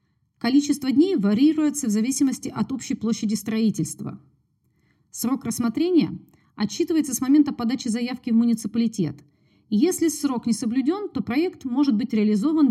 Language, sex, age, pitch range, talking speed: Russian, female, 30-49, 195-270 Hz, 125 wpm